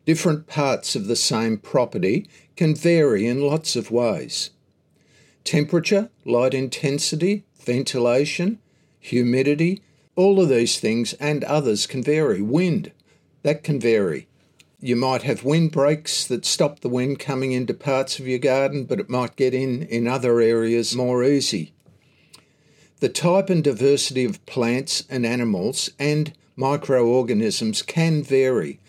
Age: 50-69